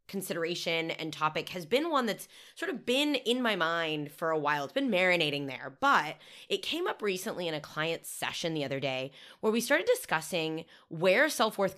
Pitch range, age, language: 160-225 Hz, 20-39, English